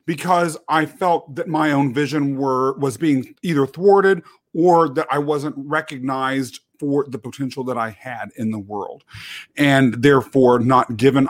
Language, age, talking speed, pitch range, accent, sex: English, 40-59, 160 wpm, 135-175 Hz, American, male